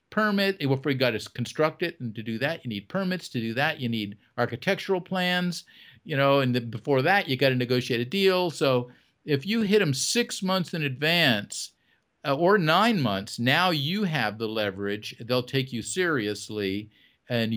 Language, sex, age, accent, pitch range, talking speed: English, male, 50-69, American, 105-145 Hz, 195 wpm